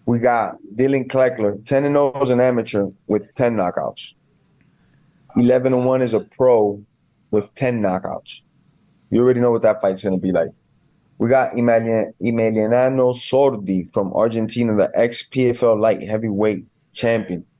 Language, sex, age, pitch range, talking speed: English, male, 20-39, 105-120 Hz, 135 wpm